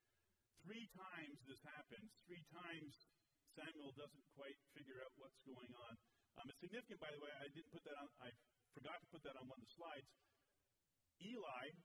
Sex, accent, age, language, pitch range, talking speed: male, American, 50-69, English, 125-160 Hz, 180 wpm